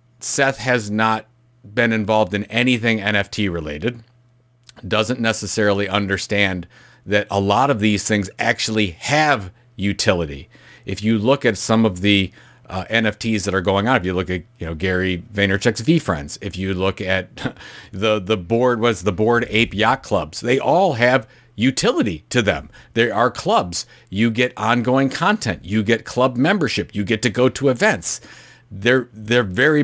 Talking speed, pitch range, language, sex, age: 165 wpm, 100-130 Hz, English, male, 50-69